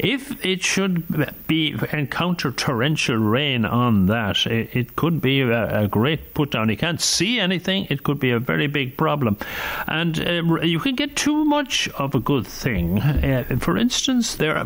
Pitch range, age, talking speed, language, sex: 130-190 Hz, 60-79, 175 wpm, English, male